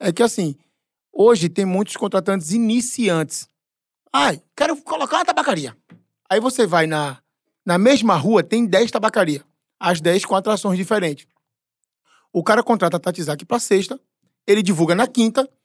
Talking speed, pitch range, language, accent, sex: 155 wpm, 175-235 Hz, Portuguese, Brazilian, male